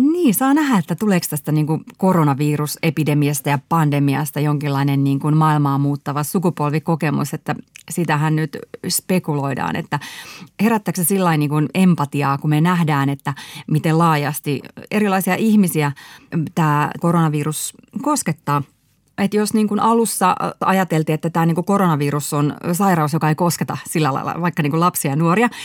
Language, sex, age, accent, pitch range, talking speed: Finnish, female, 30-49, native, 155-210 Hz, 135 wpm